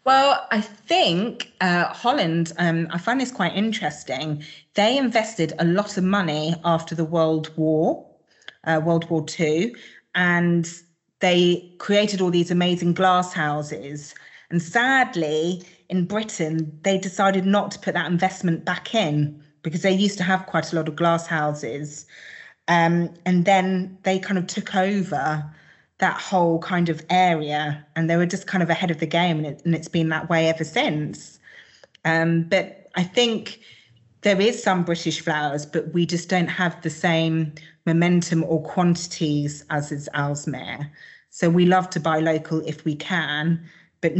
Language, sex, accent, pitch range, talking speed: English, female, British, 155-185 Hz, 165 wpm